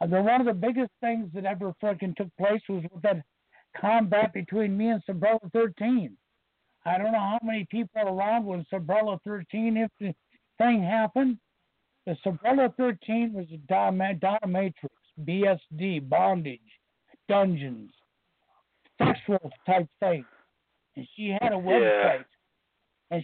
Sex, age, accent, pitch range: male, 60-79, American, 175-225 Hz